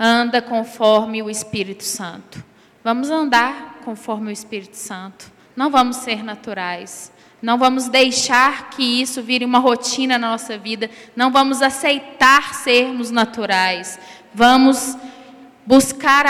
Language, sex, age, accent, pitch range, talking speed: Portuguese, female, 10-29, Brazilian, 225-275 Hz, 120 wpm